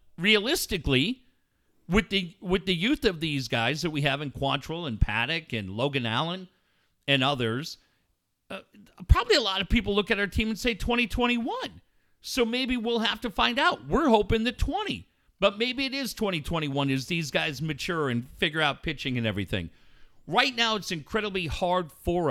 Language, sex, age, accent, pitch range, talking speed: English, male, 50-69, American, 145-220 Hz, 180 wpm